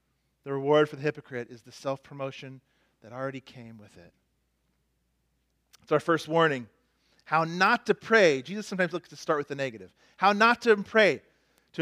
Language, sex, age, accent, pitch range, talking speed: English, male, 40-59, American, 135-205 Hz, 175 wpm